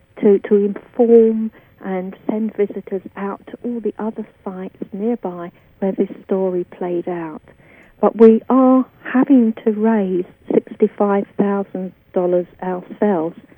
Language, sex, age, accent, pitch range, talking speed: English, female, 50-69, British, 180-225 Hz, 115 wpm